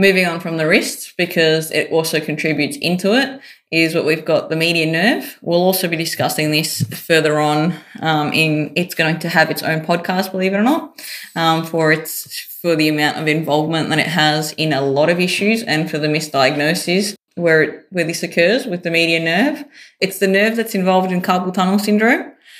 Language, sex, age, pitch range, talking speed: English, female, 20-39, 155-180 Hz, 200 wpm